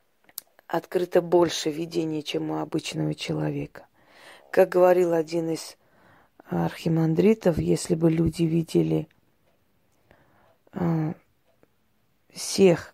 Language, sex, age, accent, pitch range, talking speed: Russian, female, 20-39, native, 160-185 Hz, 80 wpm